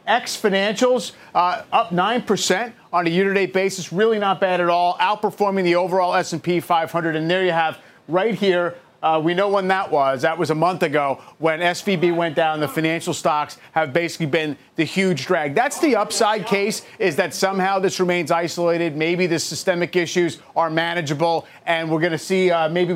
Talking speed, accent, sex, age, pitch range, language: 190 wpm, American, male, 30-49, 160-190 Hz, English